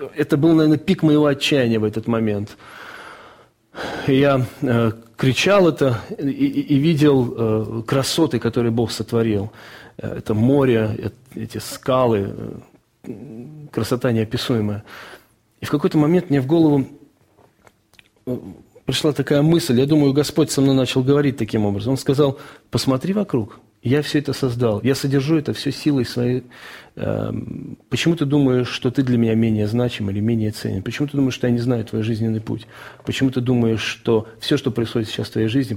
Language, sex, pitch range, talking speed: Russian, male, 110-140 Hz, 150 wpm